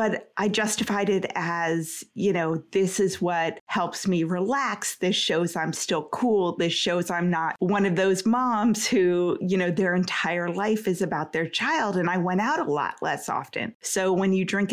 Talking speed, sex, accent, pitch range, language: 195 wpm, female, American, 170-210 Hz, English